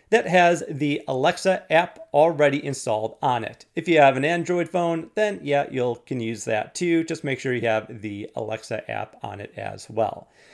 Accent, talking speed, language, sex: American, 195 wpm, English, male